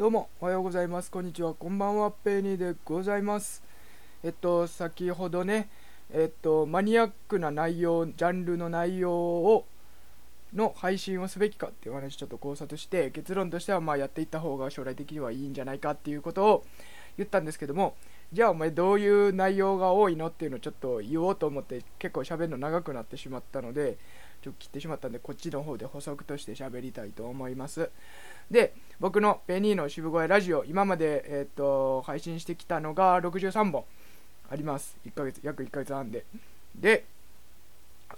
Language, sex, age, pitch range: Japanese, male, 20-39, 140-195 Hz